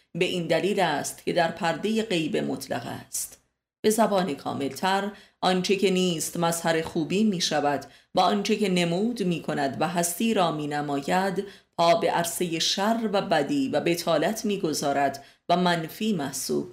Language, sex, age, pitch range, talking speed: Persian, female, 30-49, 150-195 Hz, 155 wpm